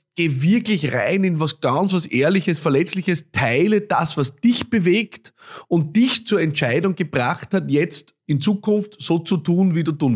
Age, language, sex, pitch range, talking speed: 30-49, German, male, 135-170 Hz, 170 wpm